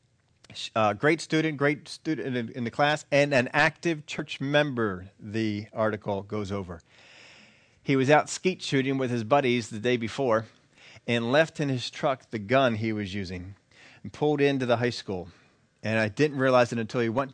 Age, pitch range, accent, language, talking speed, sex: 40-59, 110-135 Hz, American, English, 185 wpm, male